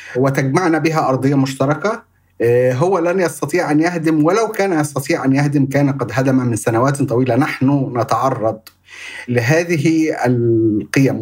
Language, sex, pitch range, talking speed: Arabic, male, 130-160 Hz, 130 wpm